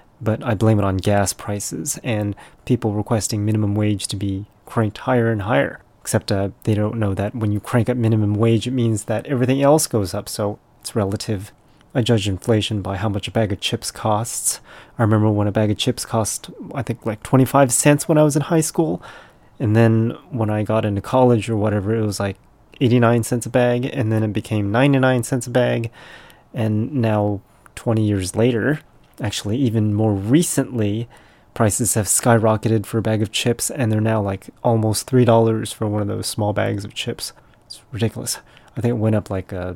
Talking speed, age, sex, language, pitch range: 200 wpm, 30-49, male, English, 105-120 Hz